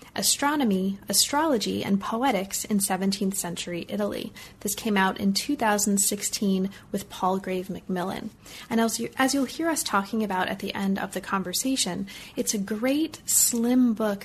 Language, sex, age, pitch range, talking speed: English, female, 30-49, 195-235 Hz, 155 wpm